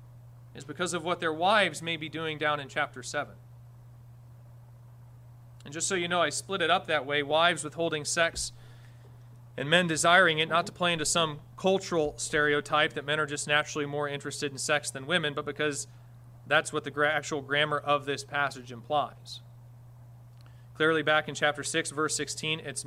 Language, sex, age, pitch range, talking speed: English, male, 30-49, 120-165 Hz, 180 wpm